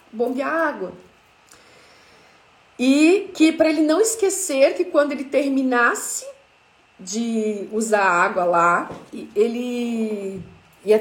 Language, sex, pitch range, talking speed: Portuguese, female, 210-310 Hz, 105 wpm